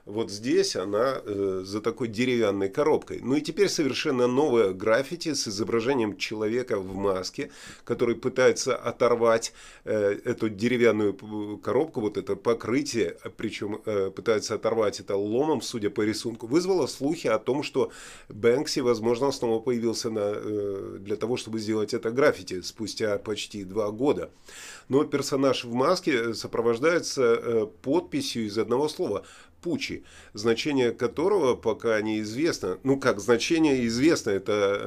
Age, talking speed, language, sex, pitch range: 30-49, 135 wpm, Russian, male, 105-135 Hz